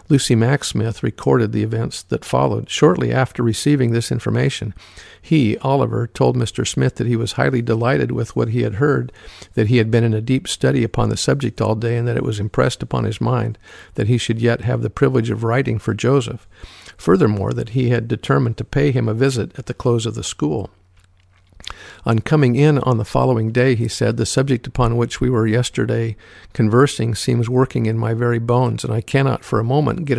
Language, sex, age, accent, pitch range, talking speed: English, male, 50-69, American, 115-130 Hz, 210 wpm